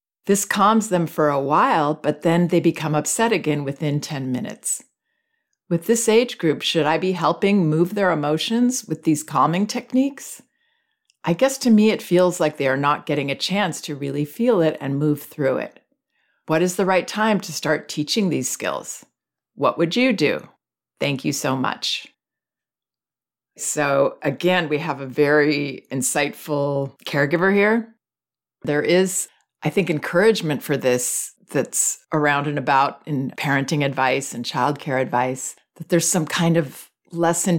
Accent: American